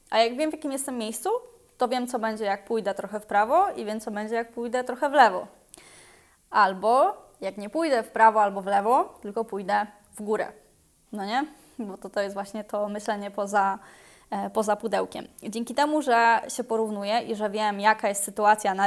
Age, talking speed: 20-39, 195 wpm